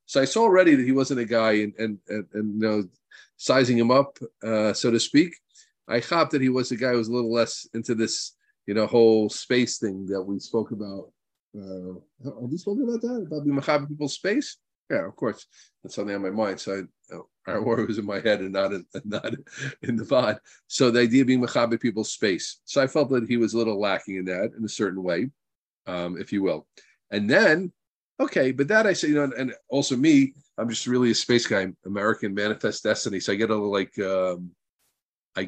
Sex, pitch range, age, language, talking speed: male, 100-130 Hz, 40-59, English, 235 wpm